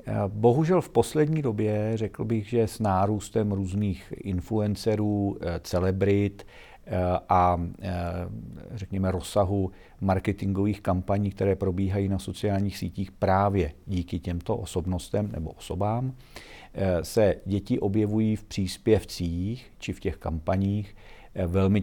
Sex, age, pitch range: male, 50-69, 90-105 Hz